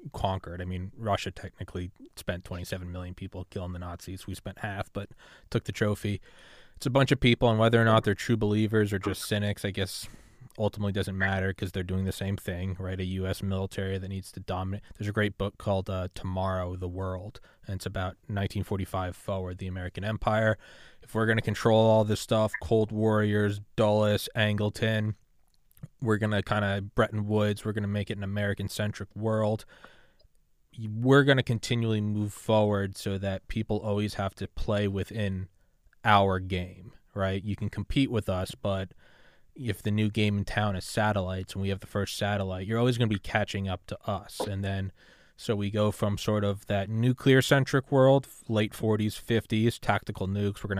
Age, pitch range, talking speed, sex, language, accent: 20-39, 95-110 Hz, 190 wpm, male, English, American